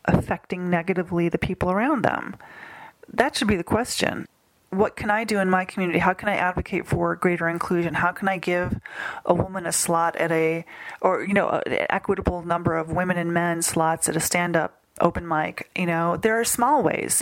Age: 30-49